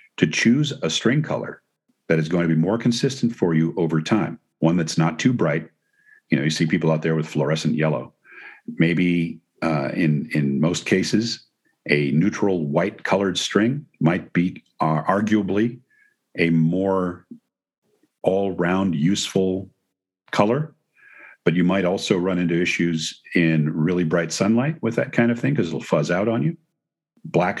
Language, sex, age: English, male, 50-69